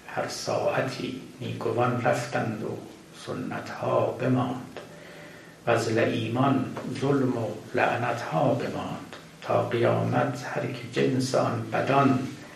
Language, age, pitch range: Persian, 60-79, 115-130 Hz